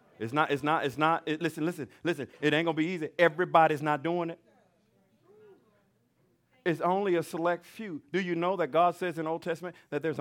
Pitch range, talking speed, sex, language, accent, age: 135-190 Hz, 210 wpm, male, English, American, 40-59